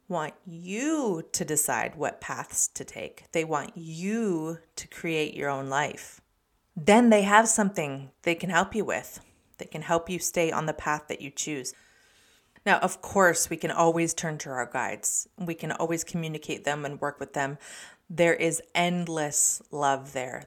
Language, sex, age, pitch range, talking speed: English, female, 30-49, 150-190 Hz, 175 wpm